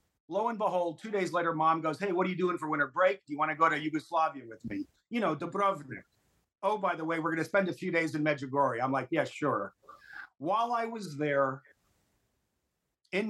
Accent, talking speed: American, 225 wpm